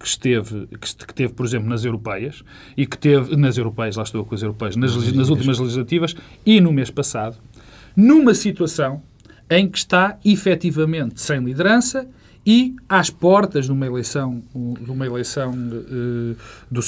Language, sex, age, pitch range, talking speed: Portuguese, male, 40-59, 125-180 Hz, 150 wpm